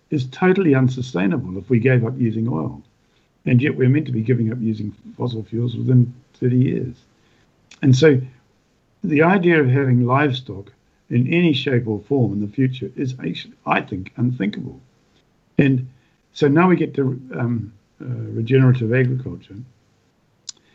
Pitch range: 120-140 Hz